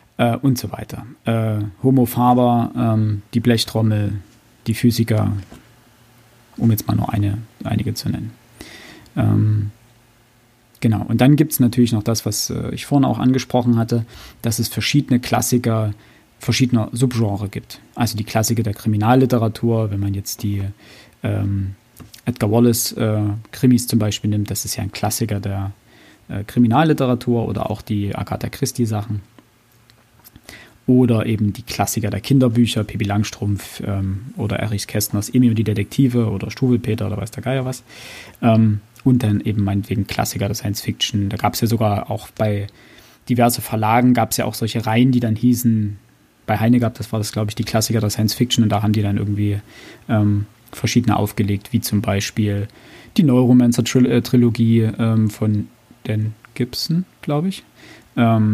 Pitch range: 105-120 Hz